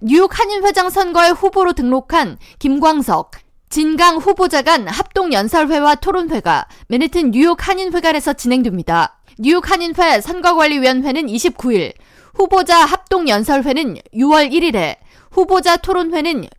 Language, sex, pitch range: Korean, female, 255-350 Hz